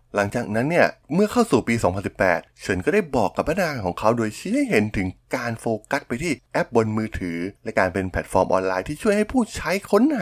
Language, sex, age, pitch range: Thai, male, 20-39, 95-130 Hz